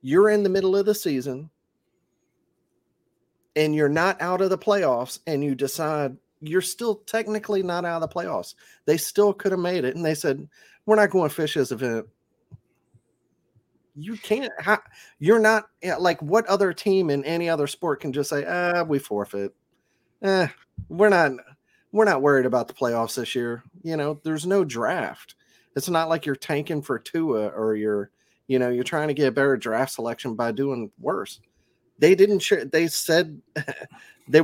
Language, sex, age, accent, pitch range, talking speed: English, male, 30-49, American, 130-175 Hz, 180 wpm